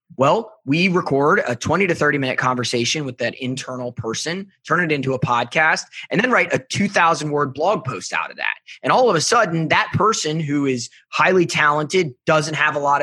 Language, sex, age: English, male, 20-39